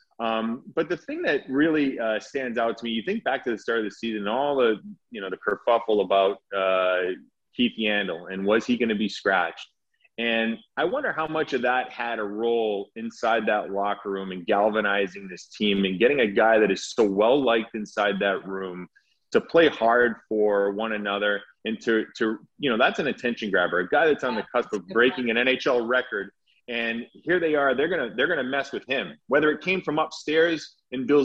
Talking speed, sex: 210 wpm, male